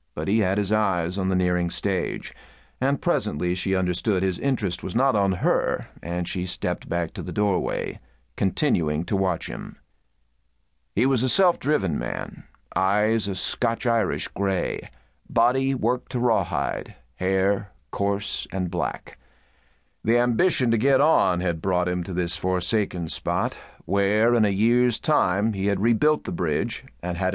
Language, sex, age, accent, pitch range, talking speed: English, male, 50-69, American, 90-115 Hz, 155 wpm